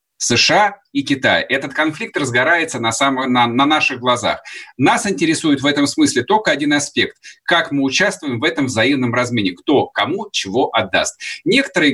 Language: Russian